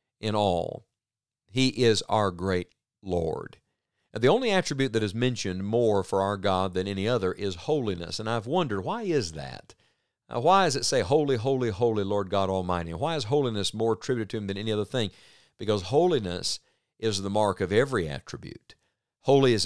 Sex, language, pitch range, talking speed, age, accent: male, English, 95-130 Hz, 180 wpm, 50-69, American